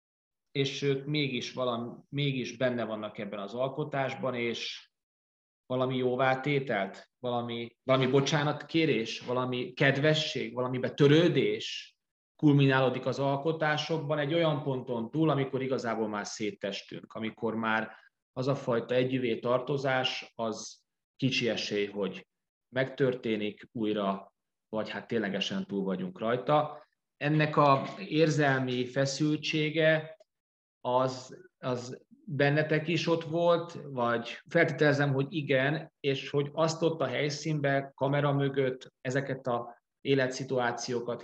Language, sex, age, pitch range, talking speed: Hungarian, male, 30-49, 115-145 Hz, 110 wpm